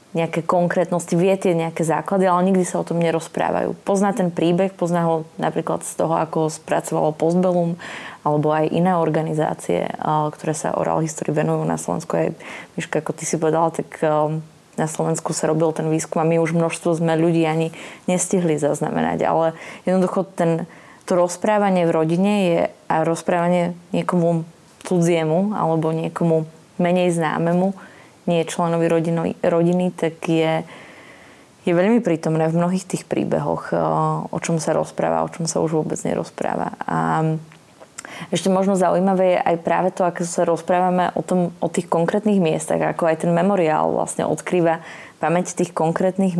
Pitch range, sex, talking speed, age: 160-180 Hz, female, 155 wpm, 20-39